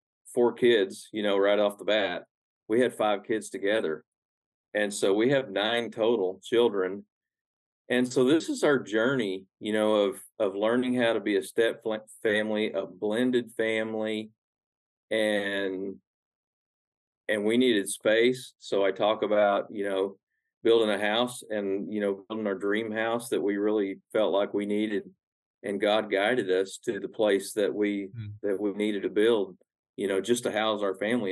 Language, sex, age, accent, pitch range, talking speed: English, male, 40-59, American, 100-110 Hz, 170 wpm